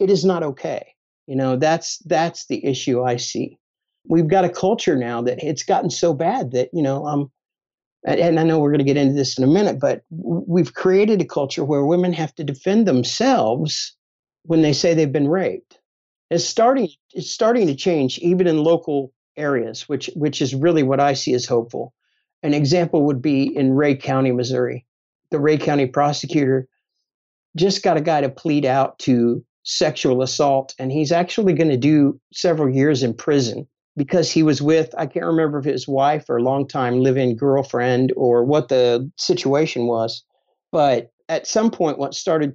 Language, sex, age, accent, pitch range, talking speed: English, male, 50-69, American, 130-165 Hz, 185 wpm